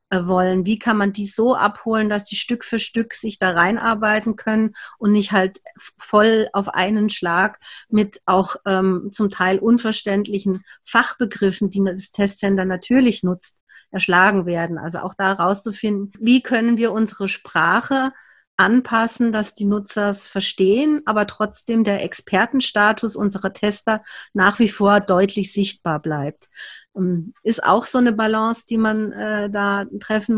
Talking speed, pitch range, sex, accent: 145 wpm, 190-220 Hz, female, German